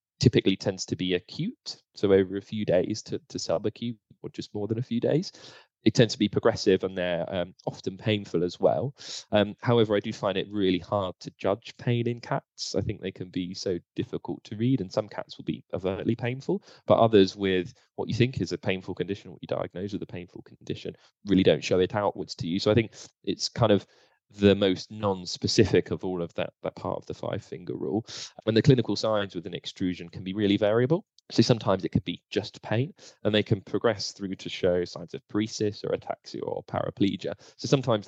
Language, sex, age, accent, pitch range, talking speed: English, male, 20-39, British, 95-115 Hz, 220 wpm